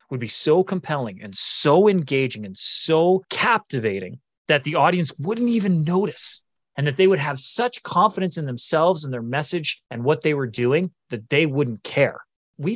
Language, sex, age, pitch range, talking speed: English, male, 30-49, 125-170 Hz, 180 wpm